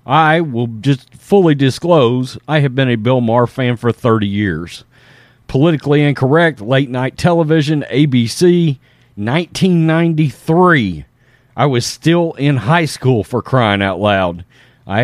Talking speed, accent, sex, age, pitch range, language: 130 wpm, American, male, 40-59, 120-155 Hz, English